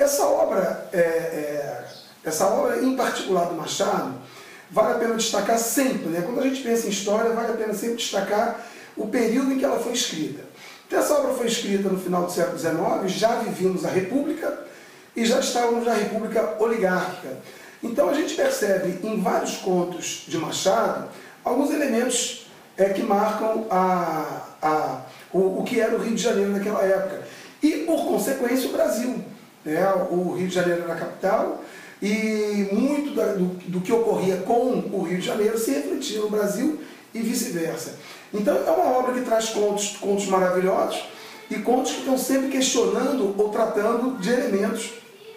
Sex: male